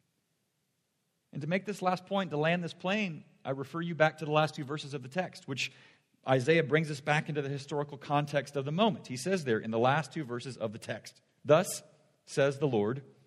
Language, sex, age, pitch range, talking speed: English, male, 40-59, 120-160 Hz, 220 wpm